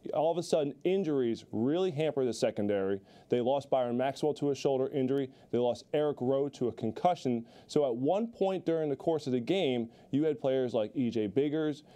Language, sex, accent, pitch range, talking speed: English, male, American, 120-150 Hz, 200 wpm